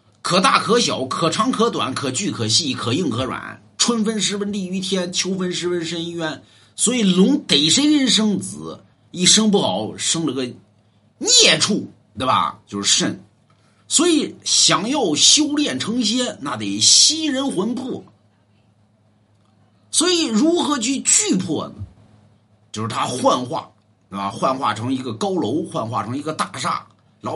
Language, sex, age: Chinese, male, 50-69